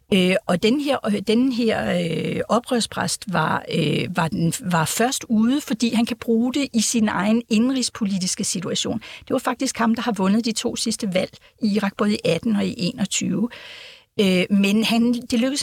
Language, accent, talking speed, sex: Danish, native, 155 wpm, female